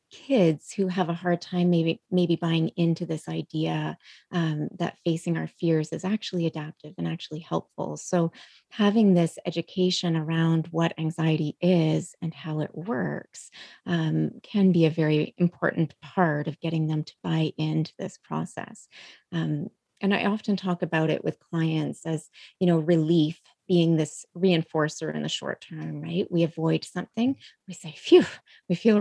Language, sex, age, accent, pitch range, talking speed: English, female, 30-49, American, 155-185 Hz, 165 wpm